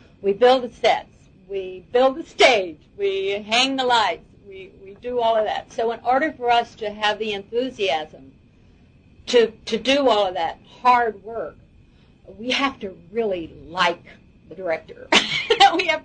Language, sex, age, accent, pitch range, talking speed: English, female, 50-69, American, 195-245 Hz, 165 wpm